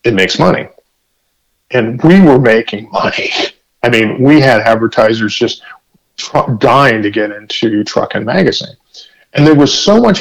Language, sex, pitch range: English, male, 110-145 Hz